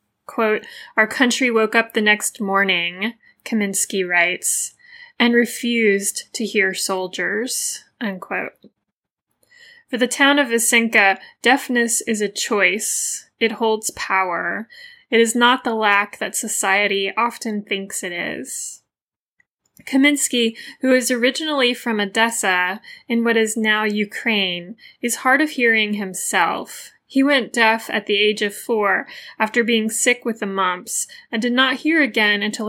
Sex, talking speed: female, 140 wpm